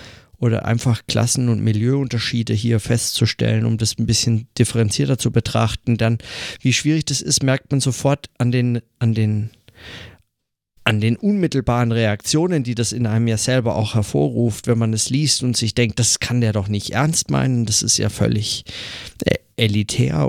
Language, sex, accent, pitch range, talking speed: German, male, German, 110-120 Hz, 160 wpm